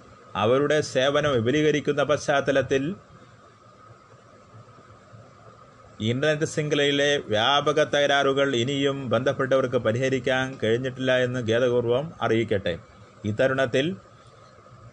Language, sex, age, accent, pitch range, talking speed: Malayalam, male, 30-49, native, 115-135 Hz, 65 wpm